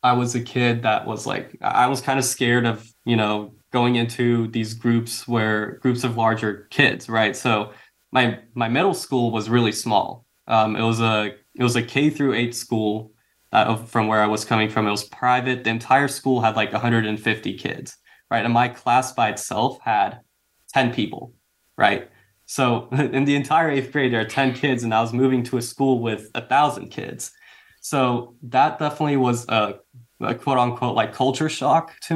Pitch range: 110-130 Hz